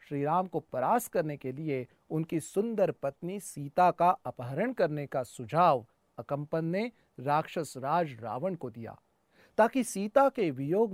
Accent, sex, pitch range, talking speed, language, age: native, male, 145-205 Hz, 135 wpm, Hindi, 40-59